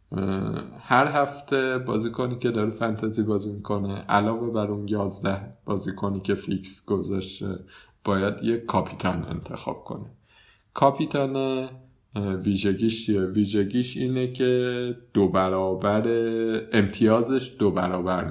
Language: Persian